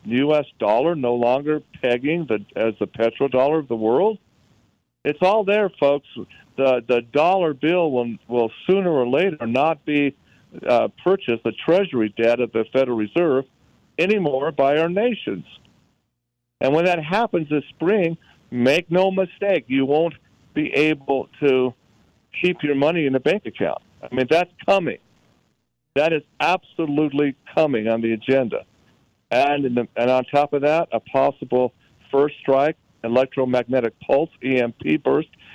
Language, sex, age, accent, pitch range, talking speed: English, male, 50-69, American, 120-155 Hz, 145 wpm